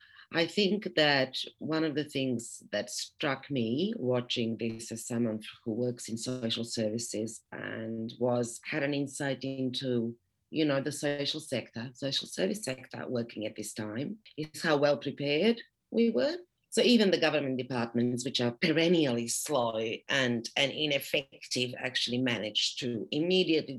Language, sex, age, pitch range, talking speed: English, female, 40-59, 115-155 Hz, 150 wpm